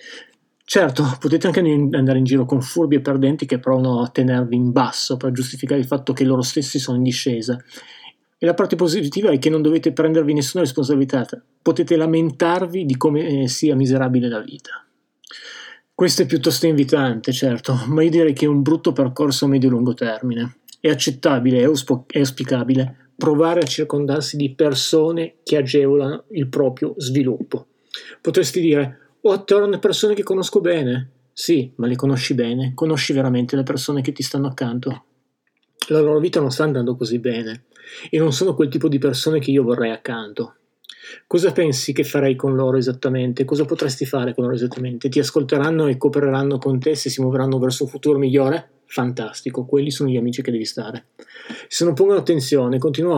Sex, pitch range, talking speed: male, 130-160 Hz, 180 wpm